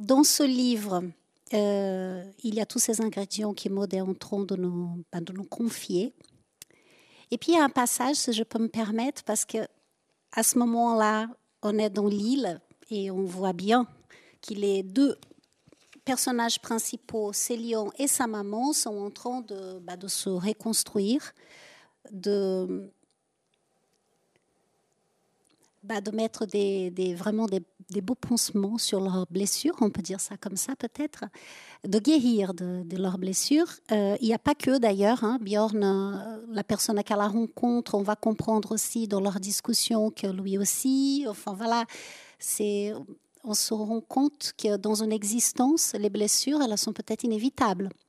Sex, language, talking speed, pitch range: female, French, 160 wpm, 200-235 Hz